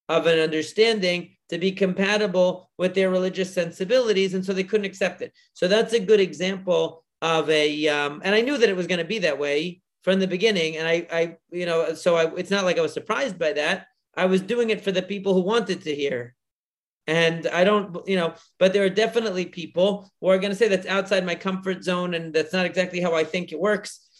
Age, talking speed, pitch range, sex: 40-59, 225 wpm, 165-195 Hz, male